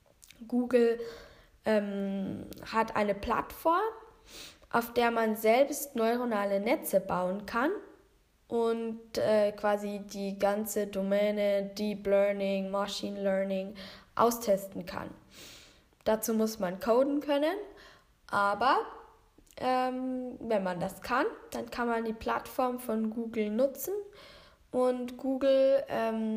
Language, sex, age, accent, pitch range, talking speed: German, female, 10-29, German, 200-255 Hz, 105 wpm